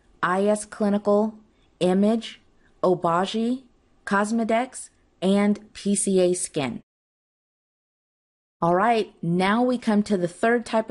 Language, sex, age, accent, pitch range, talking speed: English, female, 30-49, American, 175-215 Hz, 90 wpm